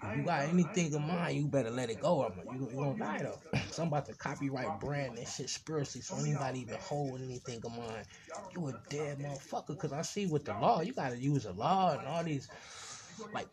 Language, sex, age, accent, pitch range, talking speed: English, male, 20-39, American, 125-175 Hz, 215 wpm